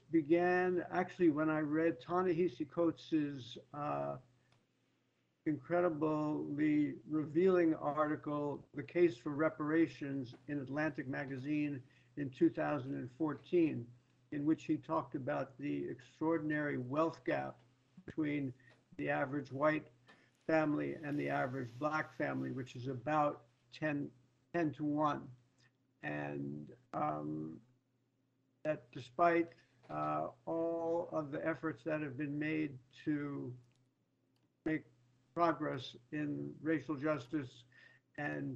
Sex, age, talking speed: male, 60-79, 100 wpm